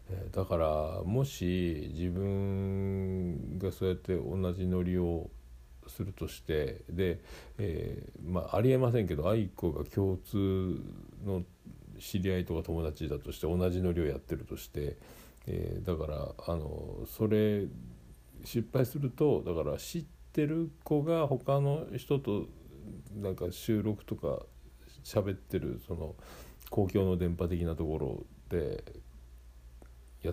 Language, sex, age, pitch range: Japanese, male, 50-69, 70-105 Hz